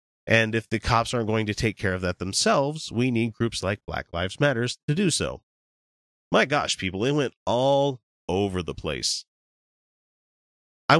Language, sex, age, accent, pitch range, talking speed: English, male, 30-49, American, 95-130 Hz, 175 wpm